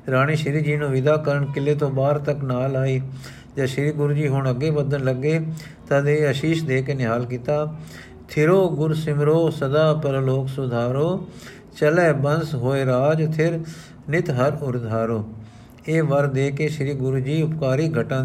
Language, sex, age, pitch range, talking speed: Punjabi, male, 50-69, 130-150 Hz, 150 wpm